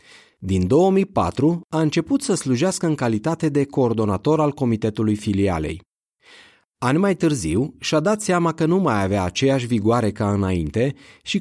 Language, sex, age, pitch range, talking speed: Romanian, male, 30-49, 105-155 Hz, 145 wpm